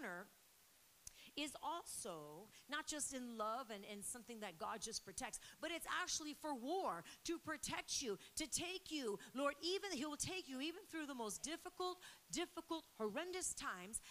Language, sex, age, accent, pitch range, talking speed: English, female, 40-59, American, 210-295 Hz, 160 wpm